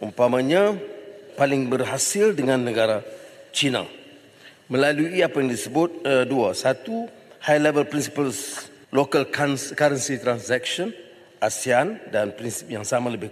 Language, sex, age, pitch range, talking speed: English, male, 40-59, 125-165 Hz, 115 wpm